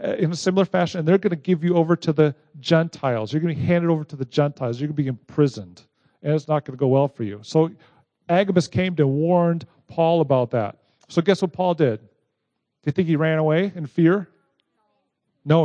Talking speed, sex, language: 225 wpm, male, English